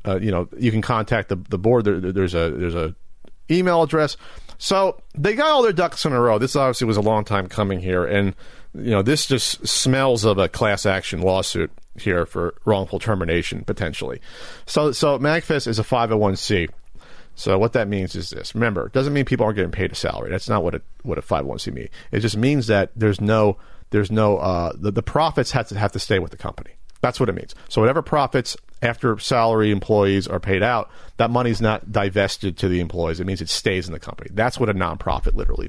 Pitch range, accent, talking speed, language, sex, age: 95-135 Hz, American, 220 wpm, English, male, 40-59